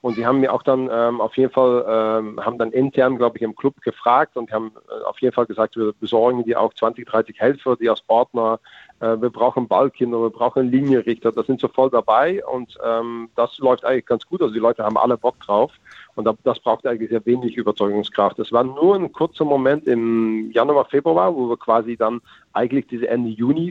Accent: German